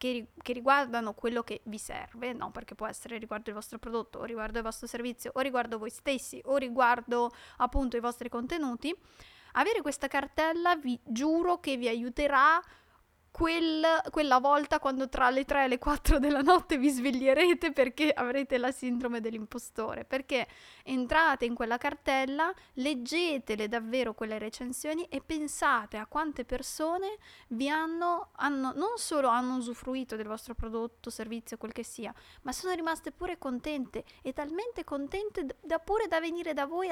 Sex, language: female, Italian